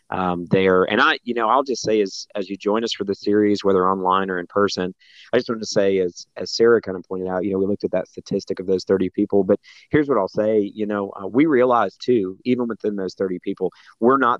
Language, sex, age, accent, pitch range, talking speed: English, male, 40-59, American, 95-105 Hz, 265 wpm